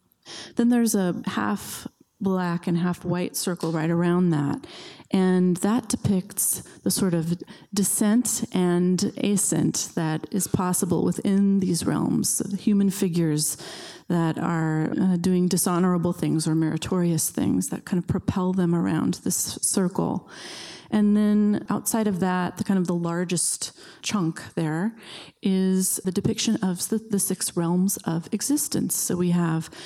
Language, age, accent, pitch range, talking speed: English, 30-49, American, 170-195 Hz, 140 wpm